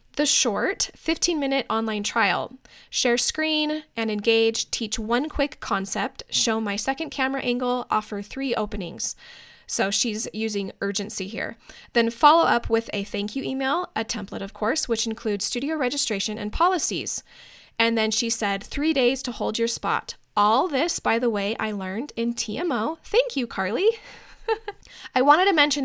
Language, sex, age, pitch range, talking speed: English, female, 10-29, 215-280 Hz, 165 wpm